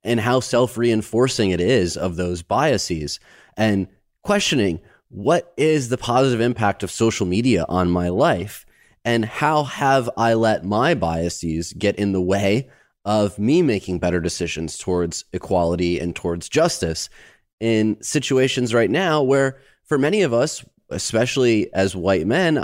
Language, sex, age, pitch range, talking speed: English, male, 30-49, 95-125 Hz, 145 wpm